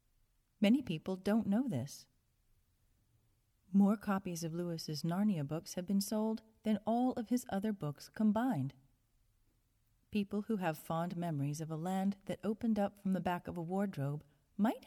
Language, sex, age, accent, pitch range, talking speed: English, female, 40-59, American, 145-215 Hz, 155 wpm